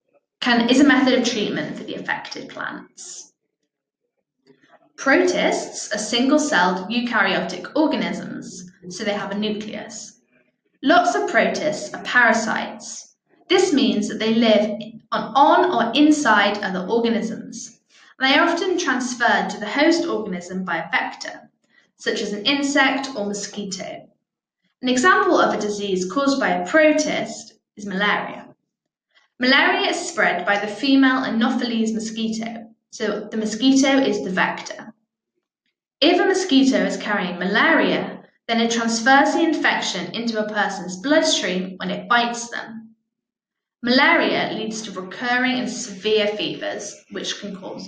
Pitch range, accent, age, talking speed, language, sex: 215-285 Hz, British, 10-29, 135 wpm, English, female